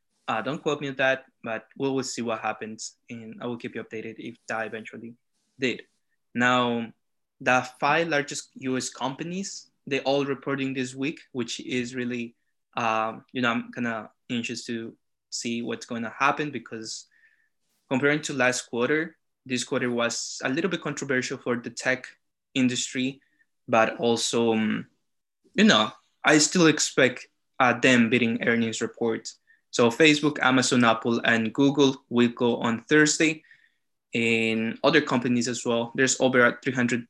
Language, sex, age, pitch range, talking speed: English, male, 20-39, 115-140 Hz, 155 wpm